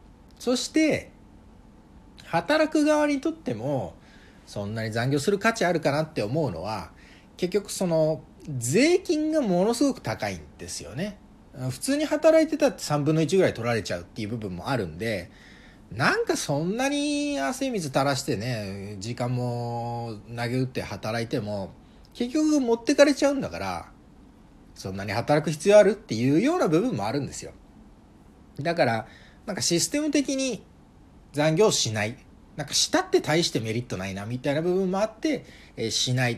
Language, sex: Japanese, male